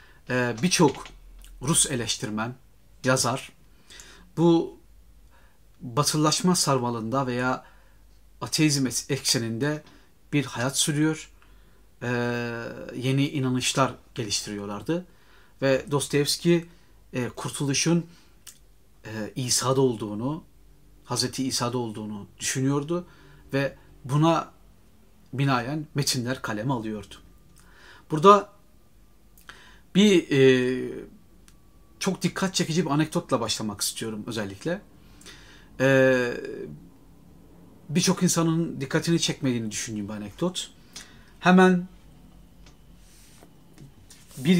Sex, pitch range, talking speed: male, 115-155 Hz, 75 wpm